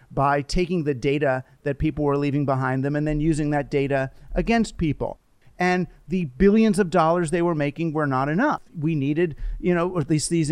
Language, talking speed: English, 205 wpm